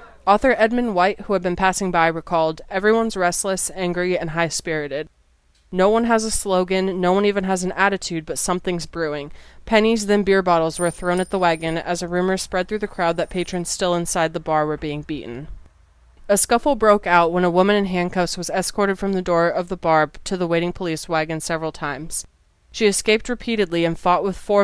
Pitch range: 165-200 Hz